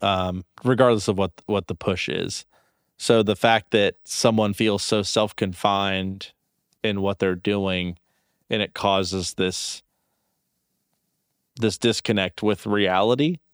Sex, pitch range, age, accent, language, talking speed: male, 95-115 Hz, 30-49, American, English, 125 wpm